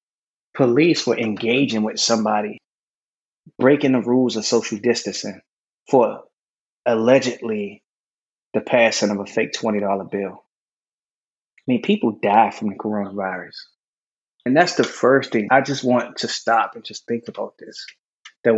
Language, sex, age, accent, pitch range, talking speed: English, male, 20-39, American, 110-130 Hz, 140 wpm